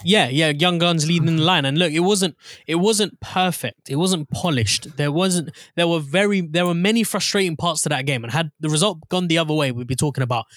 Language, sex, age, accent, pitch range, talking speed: English, male, 20-39, British, 130-175 Hz, 240 wpm